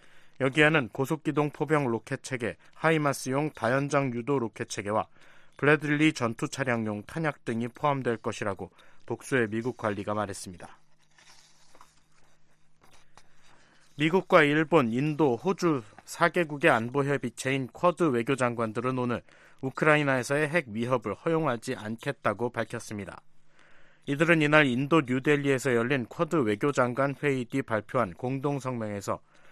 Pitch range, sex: 115-155 Hz, male